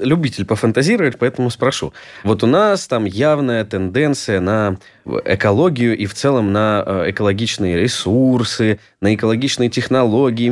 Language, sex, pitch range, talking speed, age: Russian, male, 105-125 Hz, 120 wpm, 20-39